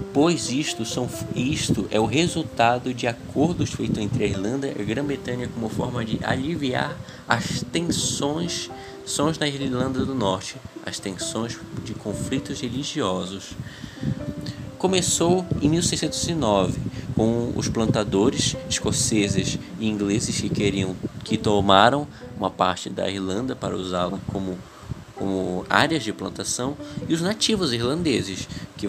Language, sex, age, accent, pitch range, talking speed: Portuguese, male, 20-39, Brazilian, 105-145 Hz, 130 wpm